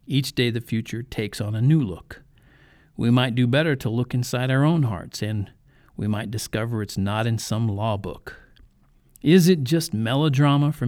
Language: English